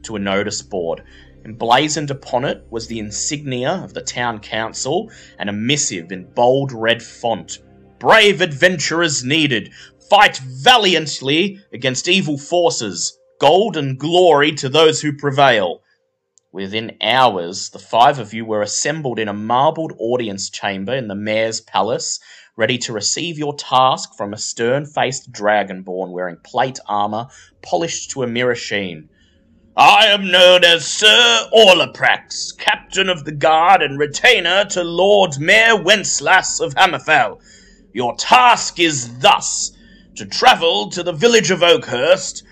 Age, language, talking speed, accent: 30-49, English, 140 wpm, Australian